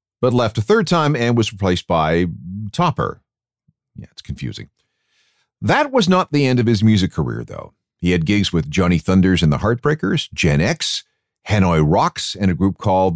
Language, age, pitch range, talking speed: English, 50-69, 95-130 Hz, 185 wpm